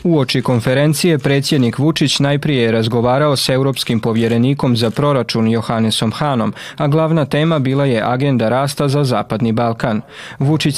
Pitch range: 120-145 Hz